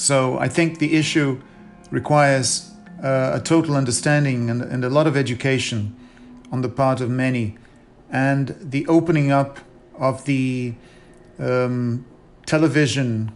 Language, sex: English, male